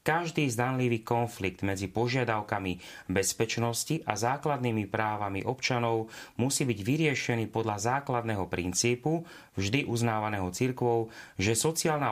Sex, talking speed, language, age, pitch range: male, 105 wpm, Slovak, 30-49, 105-125 Hz